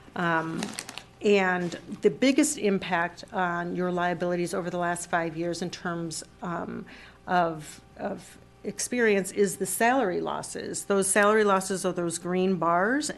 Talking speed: 135 wpm